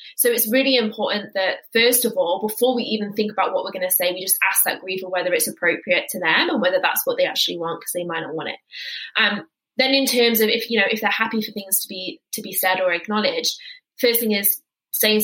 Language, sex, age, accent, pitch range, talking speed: English, female, 20-39, British, 190-230 Hz, 255 wpm